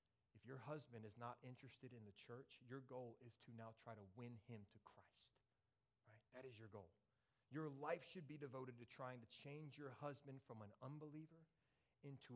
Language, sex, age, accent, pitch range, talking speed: English, male, 30-49, American, 115-155 Hz, 190 wpm